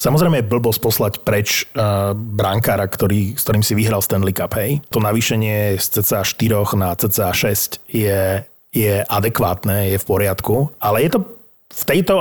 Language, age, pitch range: Slovak, 30-49, 110-140 Hz